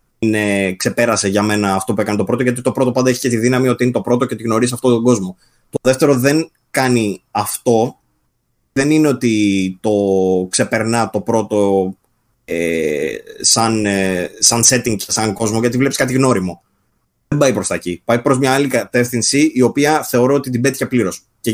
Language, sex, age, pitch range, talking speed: Greek, male, 20-39, 105-130 Hz, 180 wpm